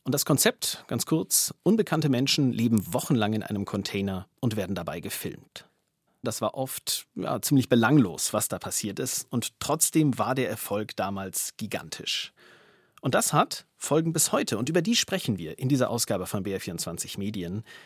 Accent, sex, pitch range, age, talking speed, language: German, male, 110-155 Hz, 30-49, 165 wpm, German